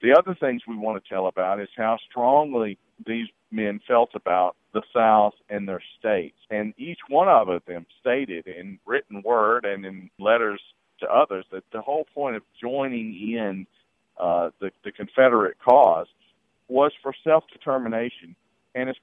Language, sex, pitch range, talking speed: English, male, 105-135 Hz, 160 wpm